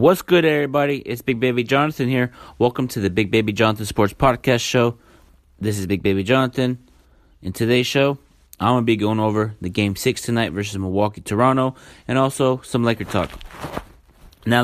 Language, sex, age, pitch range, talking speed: English, male, 30-49, 100-120 Hz, 175 wpm